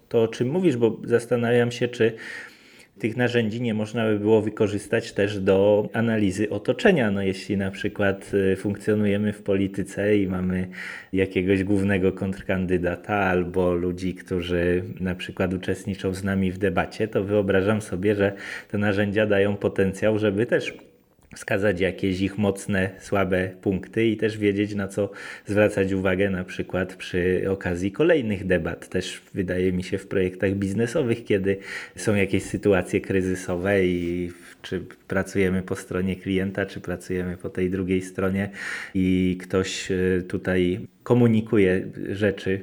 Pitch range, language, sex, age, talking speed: 95-105 Hz, Polish, male, 20-39, 140 wpm